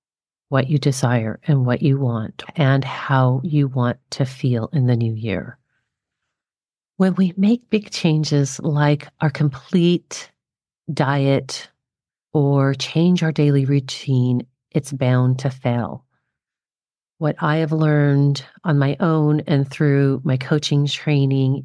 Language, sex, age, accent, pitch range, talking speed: English, female, 40-59, American, 130-150 Hz, 130 wpm